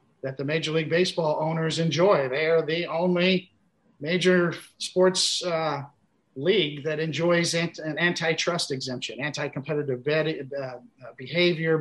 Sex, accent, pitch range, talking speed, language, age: male, American, 150-175 Hz, 110 wpm, English, 50-69